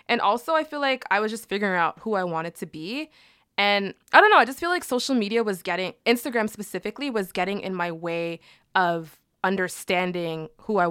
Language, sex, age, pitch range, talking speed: English, female, 20-39, 170-235 Hz, 210 wpm